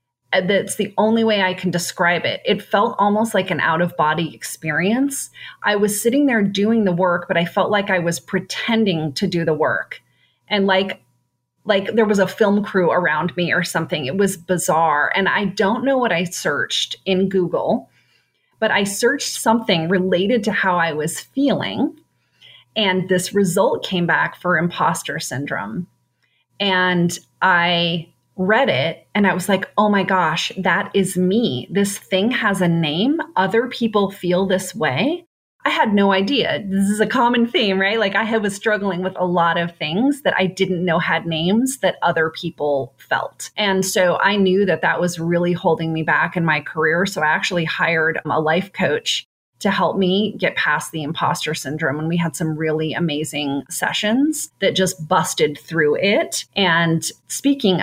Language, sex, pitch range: English, female, 165-205 Hz